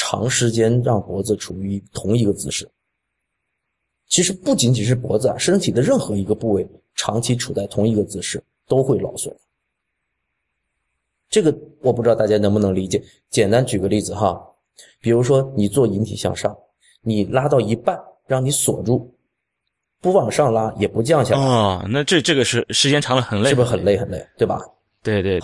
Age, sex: 20-39, male